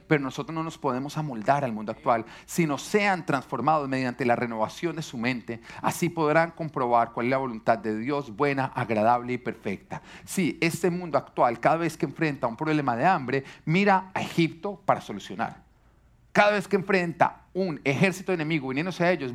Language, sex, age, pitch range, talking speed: Spanish, male, 40-59, 150-215 Hz, 185 wpm